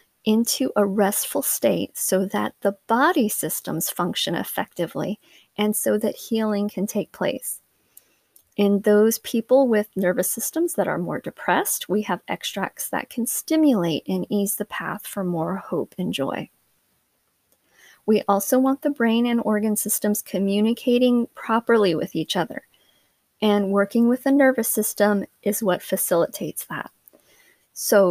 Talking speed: 145 wpm